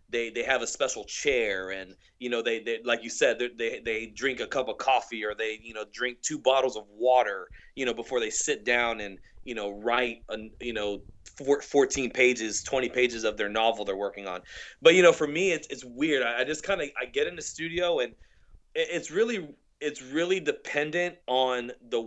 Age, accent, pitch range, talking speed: 30-49, American, 110-140 Hz, 215 wpm